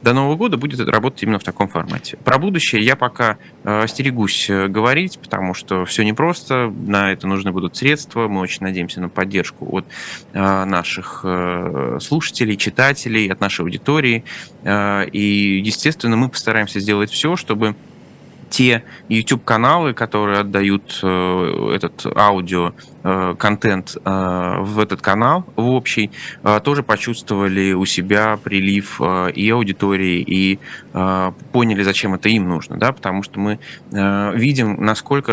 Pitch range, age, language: 95-120 Hz, 20-39, Russian